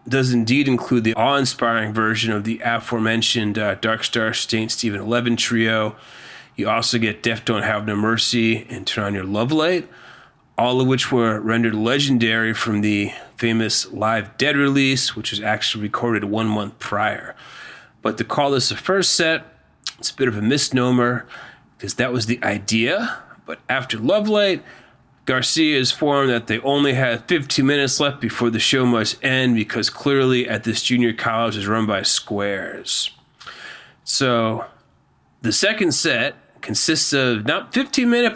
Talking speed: 165 wpm